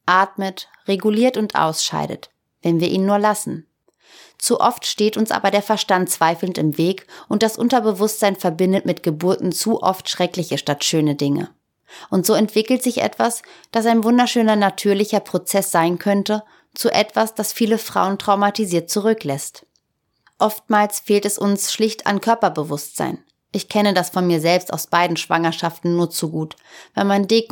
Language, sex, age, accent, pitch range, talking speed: German, female, 30-49, German, 170-210 Hz, 155 wpm